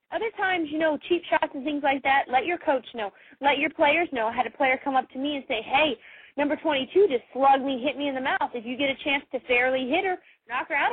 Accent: American